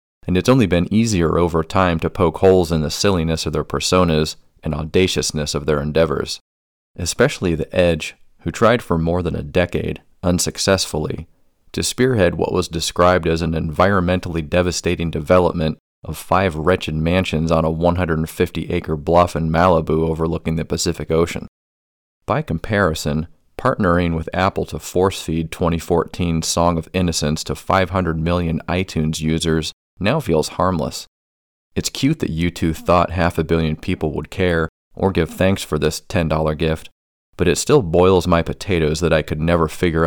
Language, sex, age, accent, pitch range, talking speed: English, male, 30-49, American, 80-90 Hz, 160 wpm